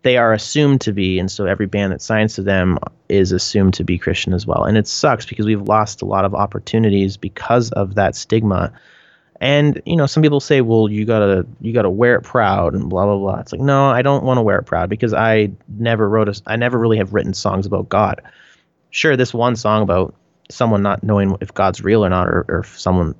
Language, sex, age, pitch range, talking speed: English, male, 30-49, 95-120 Hz, 245 wpm